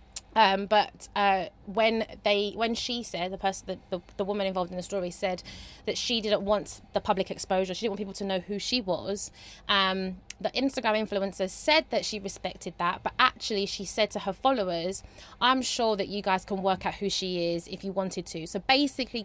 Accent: British